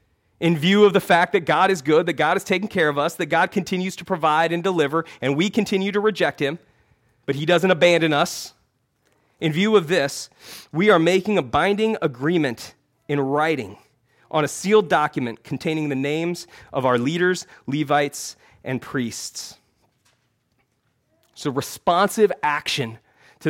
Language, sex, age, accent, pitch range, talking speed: English, male, 30-49, American, 135-180 Hz, 160 wpm